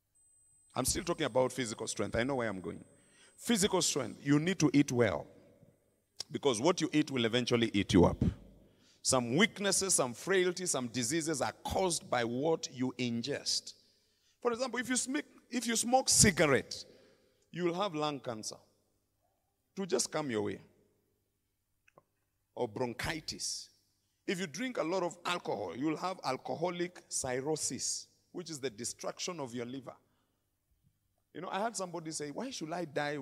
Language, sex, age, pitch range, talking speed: English, male, 50-69, 110-180 Hz, 155 wpm